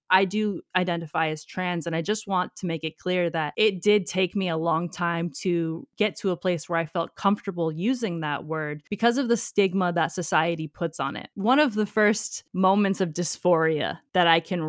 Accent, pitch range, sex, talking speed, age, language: American, 160-190 Hz, female, 210 wpm, 20-39, English